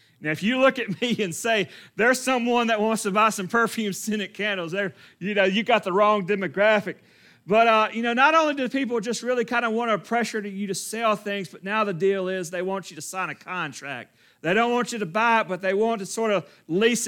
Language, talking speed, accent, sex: English, 250 wpm, American, male